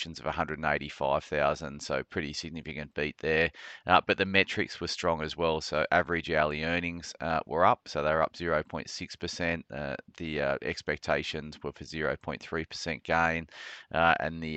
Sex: male